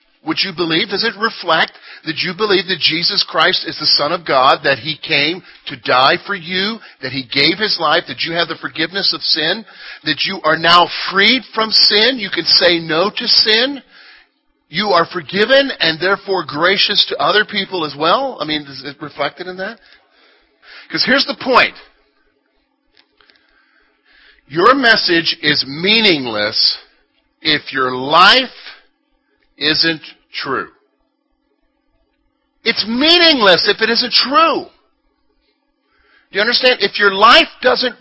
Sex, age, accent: male, 50-69, American